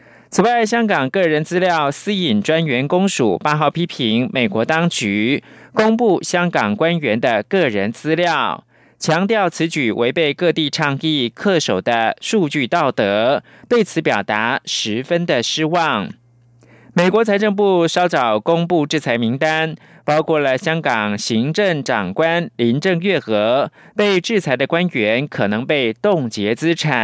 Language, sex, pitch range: German, male, 125-180 Hz